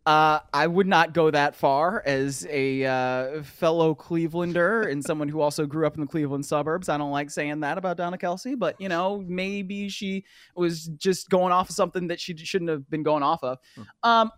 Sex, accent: male, American